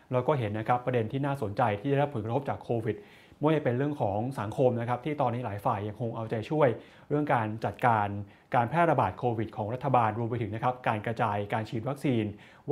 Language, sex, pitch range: Thai, male, 115-140 Hz